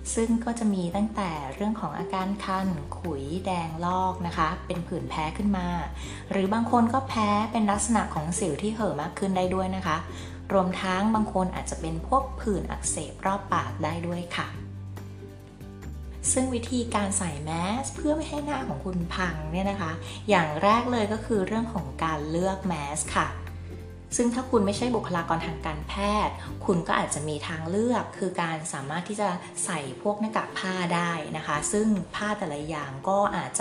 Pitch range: 155-210 Hz